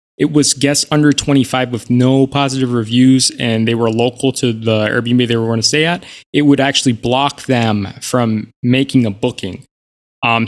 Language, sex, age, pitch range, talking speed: English, male, 20-39, 110-135 Hz, 185 wpm